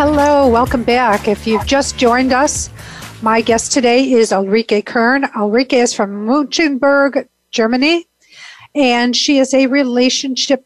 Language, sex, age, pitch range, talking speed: English, female, 50-69, 225-270 Hz, 135 wpm